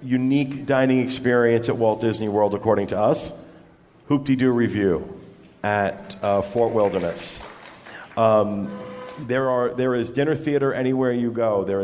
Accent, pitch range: American, 105-125 Hz